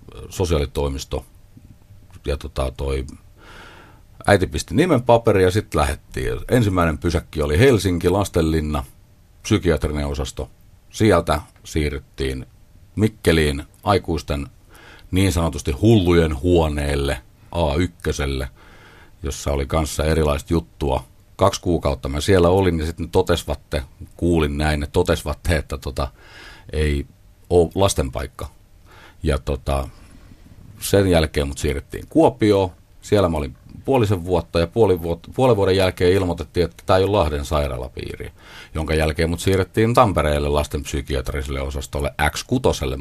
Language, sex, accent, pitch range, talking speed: Finnish, male, native, 75-95 Hz, 115 wpm